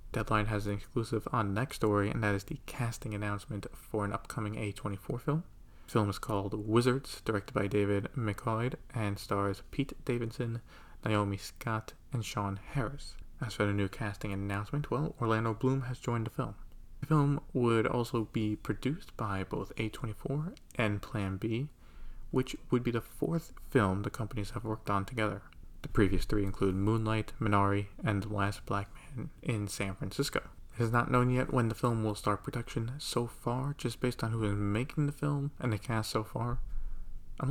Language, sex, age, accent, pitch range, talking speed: English, male, 20-39, American, 105-125 Hz, 180 wpm